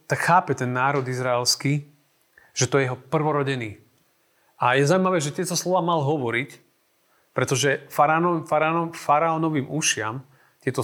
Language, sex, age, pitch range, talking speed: Slovak, male, 40-59, 125-155 Hz, 120 wpm